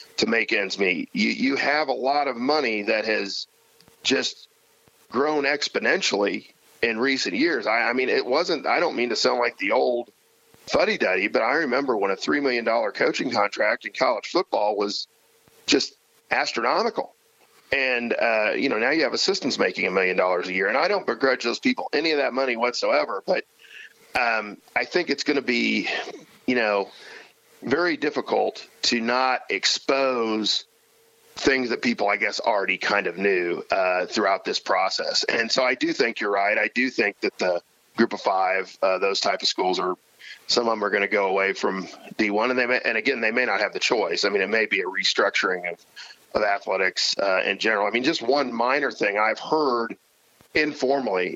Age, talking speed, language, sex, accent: 40-59, 195 wpm, English, male, American